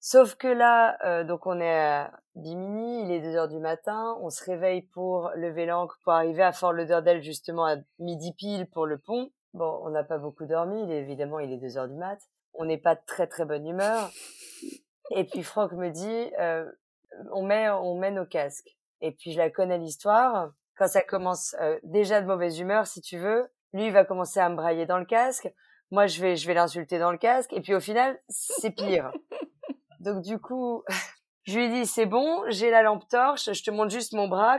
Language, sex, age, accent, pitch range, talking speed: French, female, 20-39, French, 165-220 Hz, 220 wpm